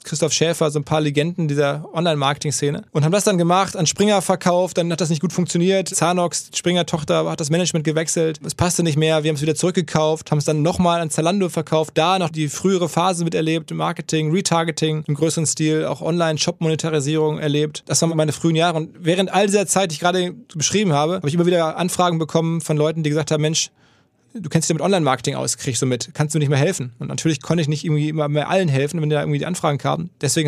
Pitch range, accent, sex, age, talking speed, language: 145-170 Hz, German, male, 20-39, 230 wpm, German